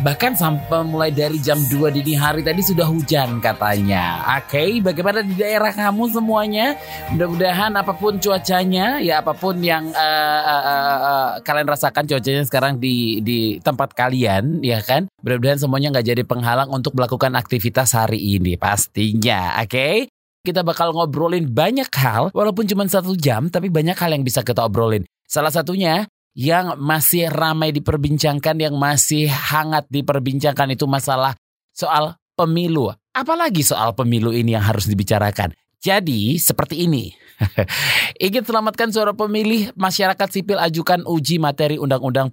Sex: male